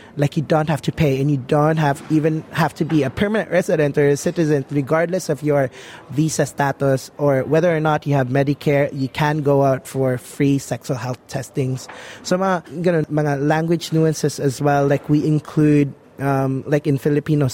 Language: Filipino